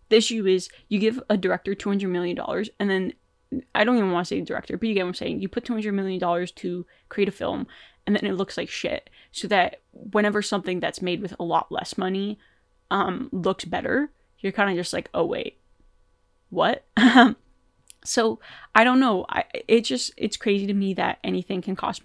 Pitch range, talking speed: 180-220 Hz, 205 wpm